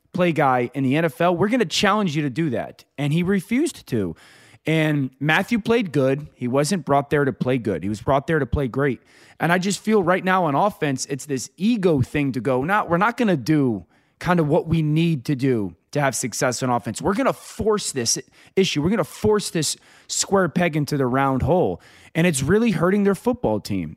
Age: 20-39